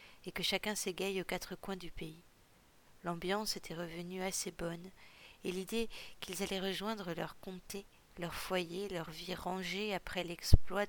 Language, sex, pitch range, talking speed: French, female, 170-195 Hz, 155 wpm